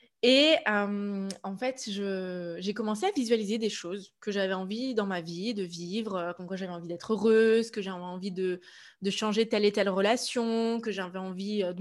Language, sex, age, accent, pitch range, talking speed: French, female, 20-39, French, 200-245 Hz, 200 wpm